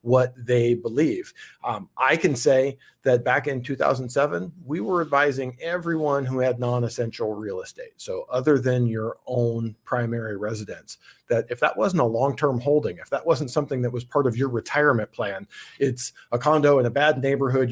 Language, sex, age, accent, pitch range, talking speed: English, male, 40-59, American, 115-140 Hz, 175 wpm